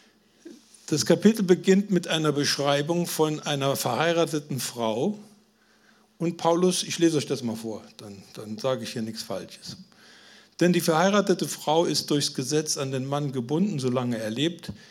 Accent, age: German, 50-69